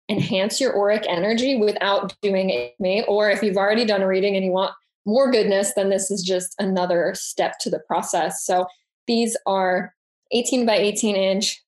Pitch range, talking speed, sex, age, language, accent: 190-230 Hz, 180 wpm, female, 10-29, English, American